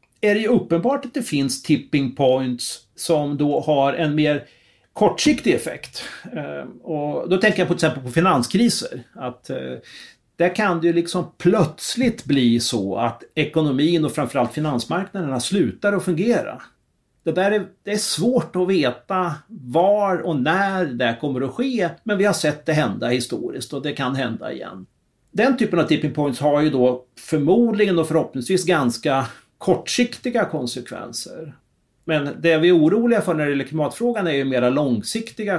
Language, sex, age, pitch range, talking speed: Swedish, male, 40-59, 135-185 Hz, 160 wpm